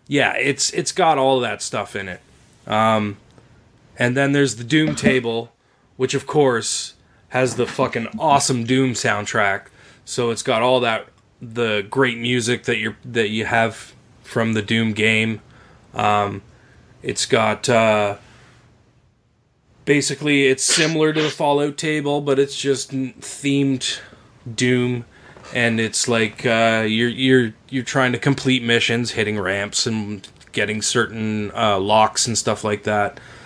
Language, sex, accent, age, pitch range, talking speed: English, male, American, 20-39, 105-130 Hz, 145 wpm